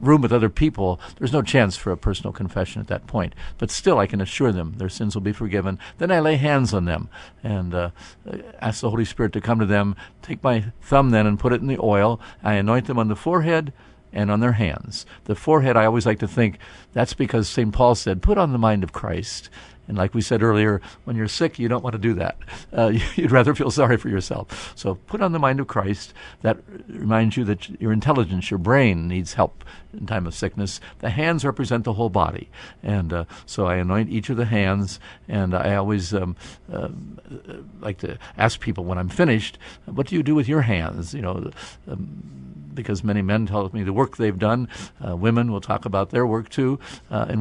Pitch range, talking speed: 100-120 Hz, 225 wpm